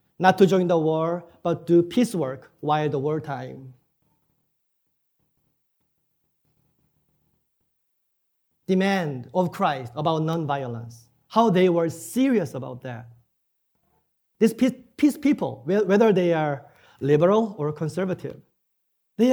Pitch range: 150-225 Hz